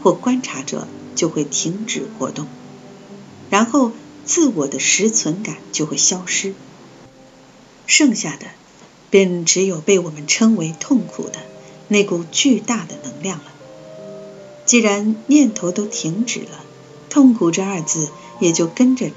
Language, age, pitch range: Chinese, 50-69, 155-230 Hz